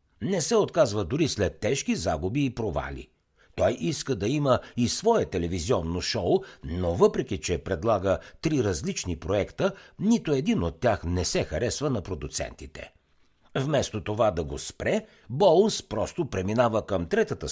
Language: Bulgarian